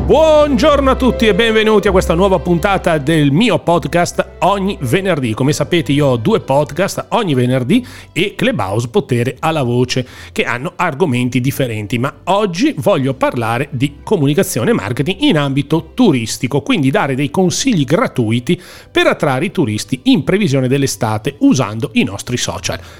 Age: 40-59